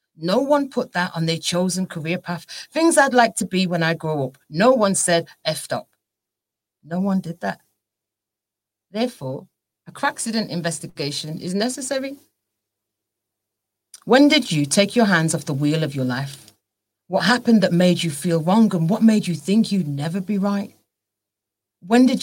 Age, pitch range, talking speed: 40-59, 155-225 Hz, 175 wpm